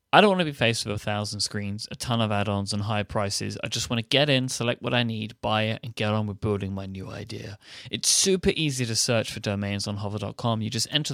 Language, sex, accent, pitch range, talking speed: English, male, British, 110-140 Hz, 265 wpm